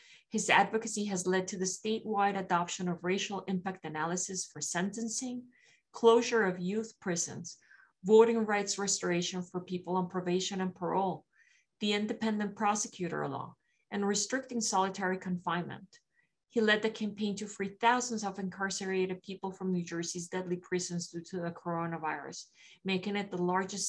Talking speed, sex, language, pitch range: 145 wpm, female, English, 175-210 Hz